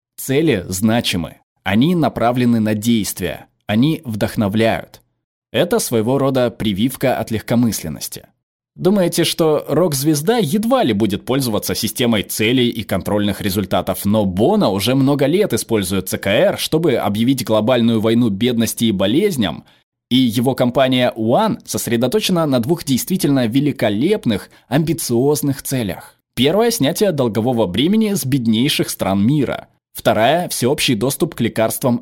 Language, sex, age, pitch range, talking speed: Russian, male, 20-39, 110-155 Hz, 120 wpm